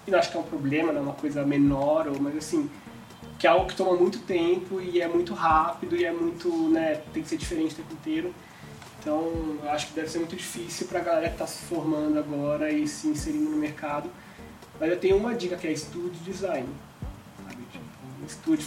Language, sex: Portuguese, male